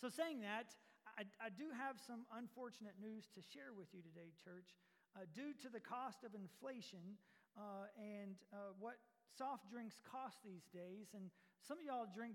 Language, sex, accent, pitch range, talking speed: English, male, American, 195-245 Hz, 180 wpm